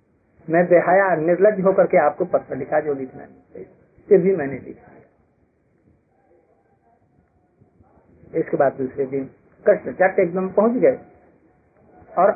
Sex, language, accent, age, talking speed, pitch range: male, Hindi, native, 50-69, 115 wpm, 140-195 Hz